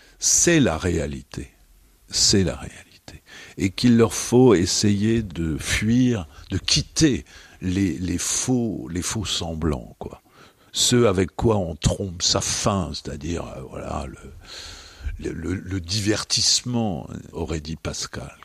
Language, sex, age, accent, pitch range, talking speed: French, male, 60-79, French, 80-110 Hz, 125 wpm